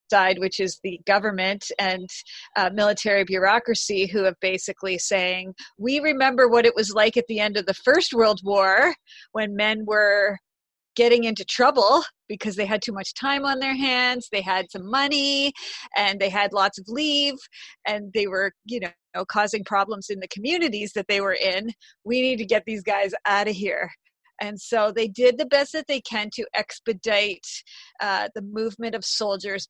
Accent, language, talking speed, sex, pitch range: American, English, 185 wpm, female, 195-230 Hz